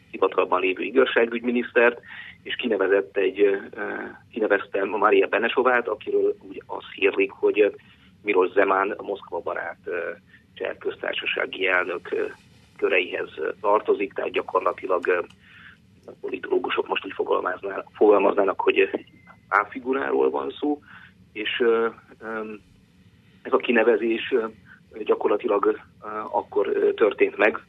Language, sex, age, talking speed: Hungarian, male, 30-49, 90 wpm